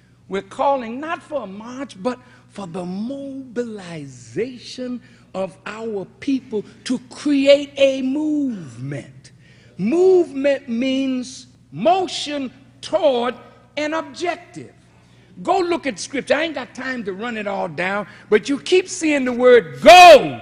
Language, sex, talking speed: English, male, 125 wpm